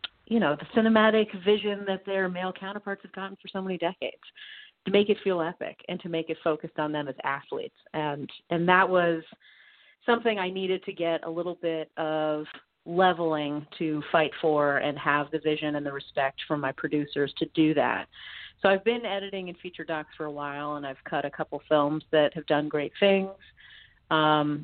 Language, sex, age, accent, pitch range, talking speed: English, female, 40-59, American, 150-185 Hz, 195 wpm